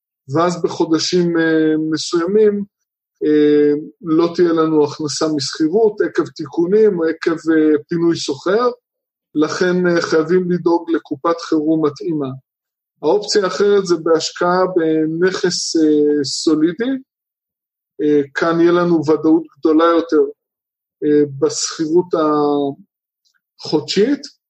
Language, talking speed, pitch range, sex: Hebrew, 85 wpm, 150-195 Hz, male